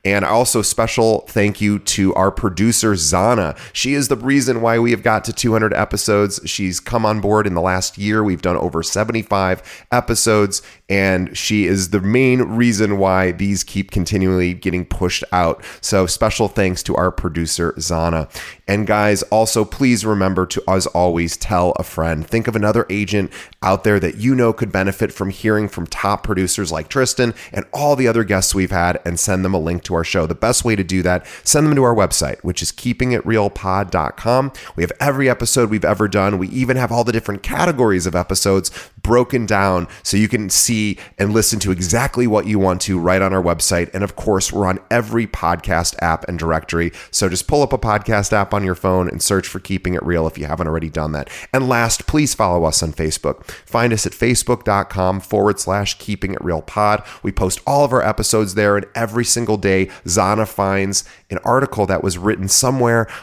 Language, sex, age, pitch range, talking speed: English, male, 30-49, 90-110 Hz, 200 wpm